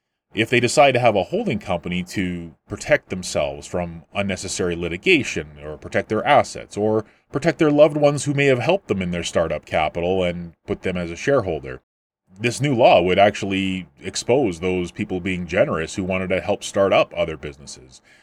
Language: English